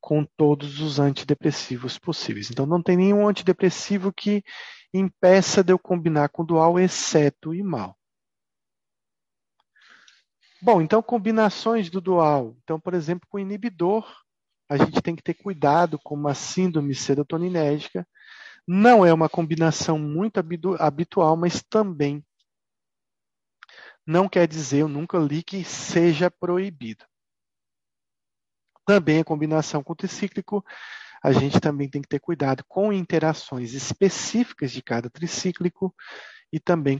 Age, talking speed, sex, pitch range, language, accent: 40-59, 130 wpm, male, 145-185 Hz, Italian, Brazilian